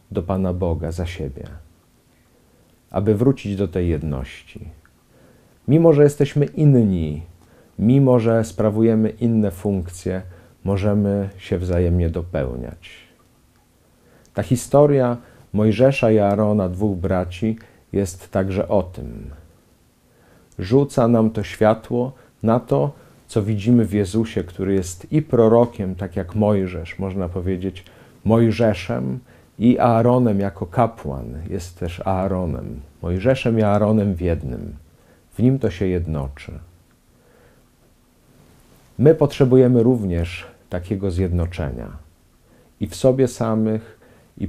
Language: Polish